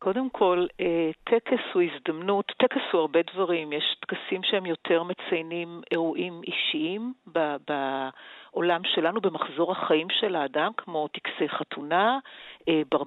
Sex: female